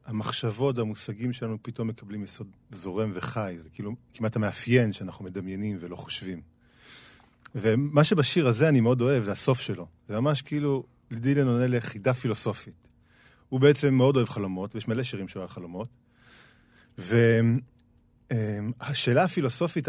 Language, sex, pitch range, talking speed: Hebrew, male, 110-140 Hz, 135 wpm